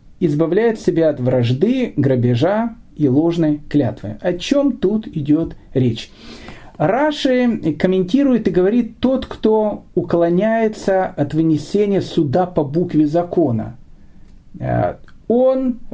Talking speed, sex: 100 wpm, male